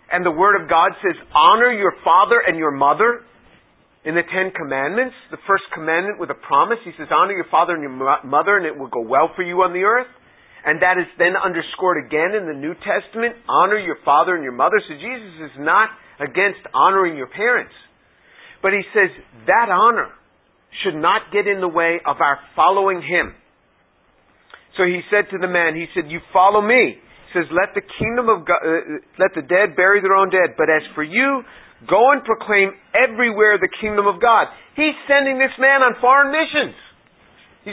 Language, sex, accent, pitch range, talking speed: English, male, American, 180-240 Hz, 195 wpm